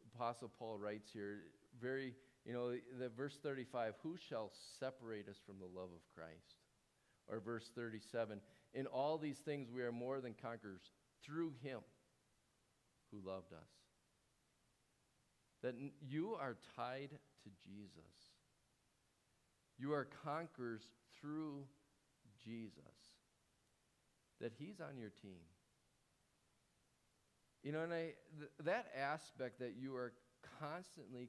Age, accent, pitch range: 50-69, American, 100-135 Hz